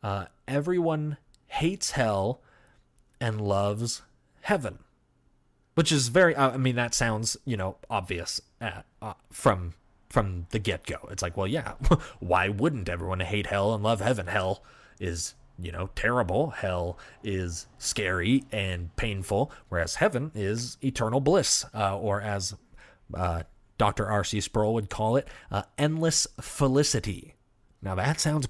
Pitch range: 100-135 Hz